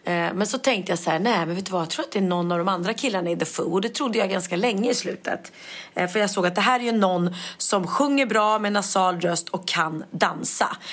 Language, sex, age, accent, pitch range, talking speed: Swedish, female, 30-49, native, 175-220 Hz, 270 wpm